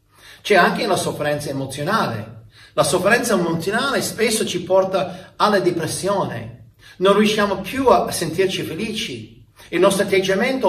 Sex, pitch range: male, 120-195 Hz